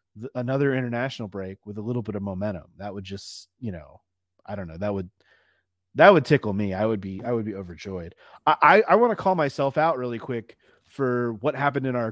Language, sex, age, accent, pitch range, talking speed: English, male, 30-49, American, 120-150 Hz, 225 wpm